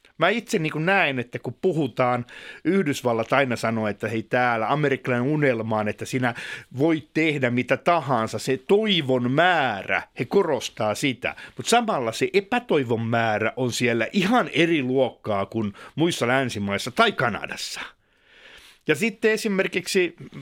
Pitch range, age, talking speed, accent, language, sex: 120-165 Hz, 50-69, 135 wpm, native, Finnish, male